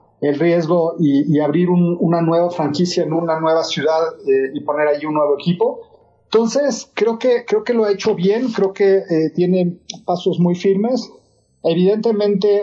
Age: 40-59